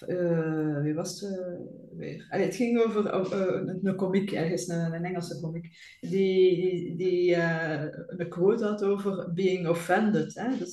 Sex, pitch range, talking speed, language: female, 175-210 Hz, 175 wpm, English